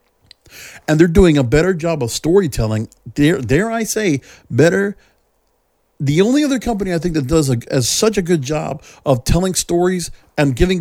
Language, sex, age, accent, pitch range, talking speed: English, male, 50-69, American, 125-185 Hz, 170 wpm